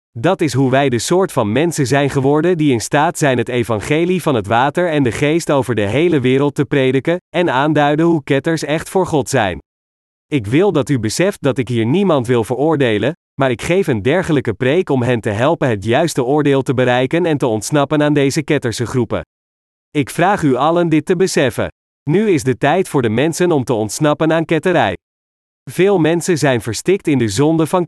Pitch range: 120-160 Hz